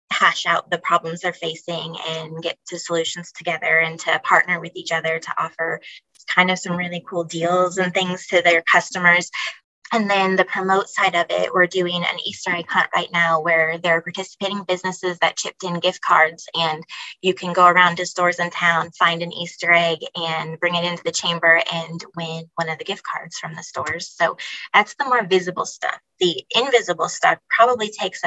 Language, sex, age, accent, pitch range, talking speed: English, female, 20-39, American, 165-185 Hz, 200 wpm